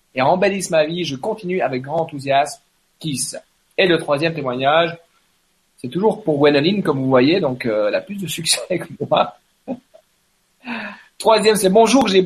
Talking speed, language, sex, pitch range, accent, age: 160 wpm, French, male, 140-185 Hz, French, 40-59